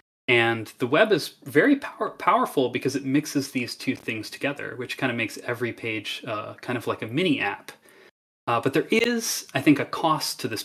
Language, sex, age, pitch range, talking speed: English, male, 20-39, 115-150 Hz, 210 wpm